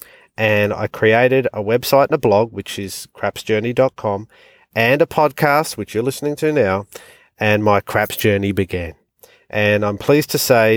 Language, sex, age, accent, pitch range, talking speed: English, male, 40-59, Australian, 100-125 Hz, 160 wpm